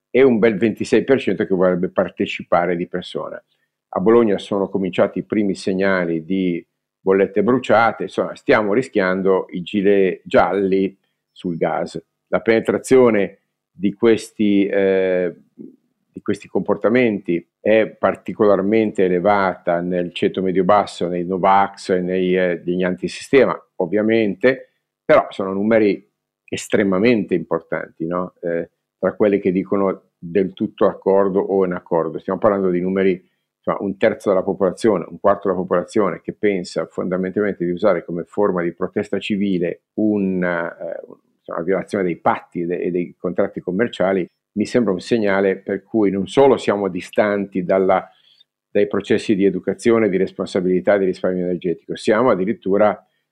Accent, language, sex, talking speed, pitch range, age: native, Italian, male, 135 wpm, 90-105 Hz, 50-69